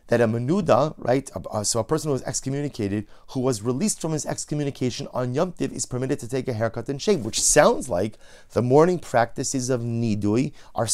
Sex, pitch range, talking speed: male, 125-165 Hz, 210 wpm